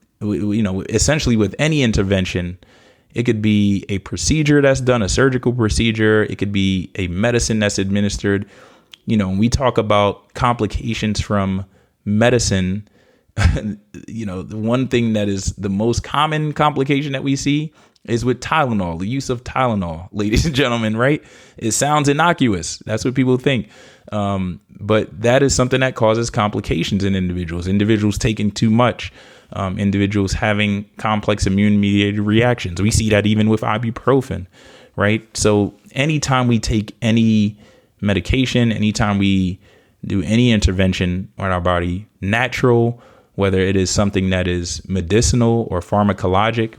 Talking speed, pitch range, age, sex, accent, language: 145 wpm, 100-120 Hz, 20-39, male, American, English